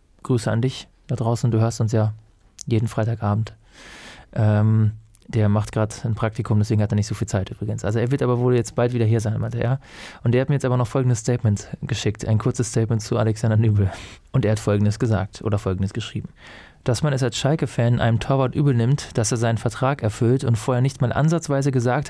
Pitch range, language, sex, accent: 110-130 Hz, German, male, German